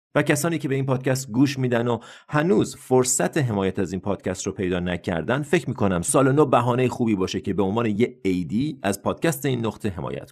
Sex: male